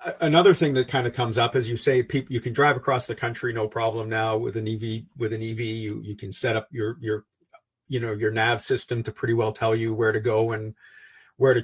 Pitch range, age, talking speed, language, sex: 110-130 Hz, 40-59, 245 wpm, English, male